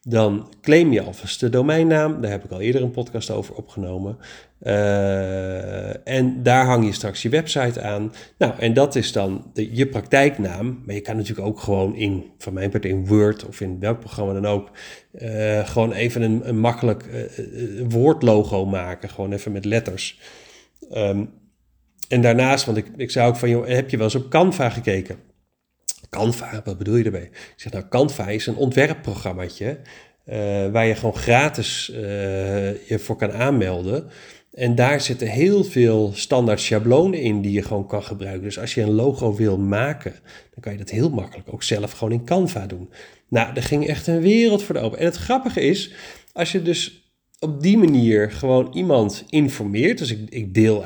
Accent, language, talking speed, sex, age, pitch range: Dutch, Dutch, 185 wpm, male, 40-59, 100-130 Hz